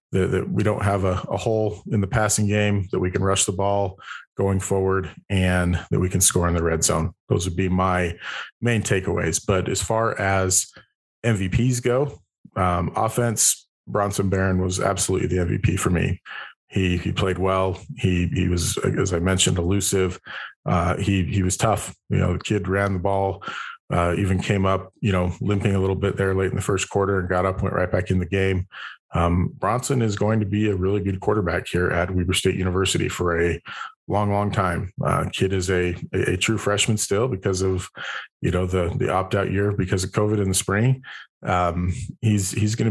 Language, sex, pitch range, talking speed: English, male, 90-105 Hz, 205 wpm